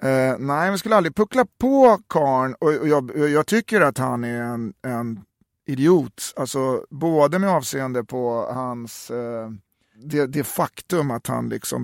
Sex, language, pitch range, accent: male, Swedish, 120-145 Hz, native